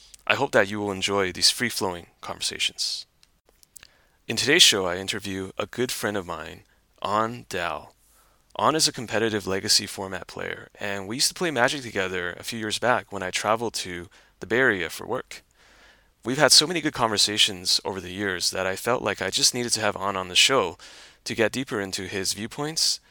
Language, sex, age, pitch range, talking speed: English, male, 30-49, 95-120 Hz, 195 wpm